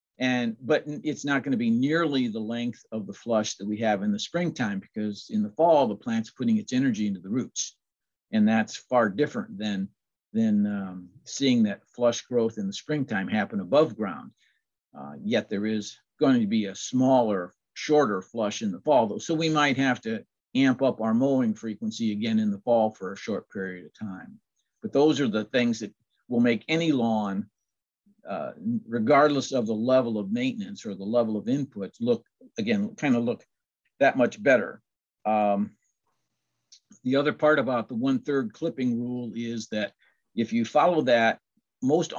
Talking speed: 185 wpm